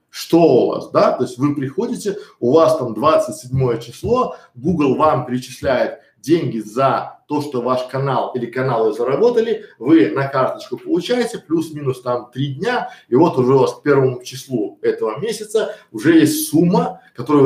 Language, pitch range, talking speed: Russian, 135-200 Hz, 165 wpm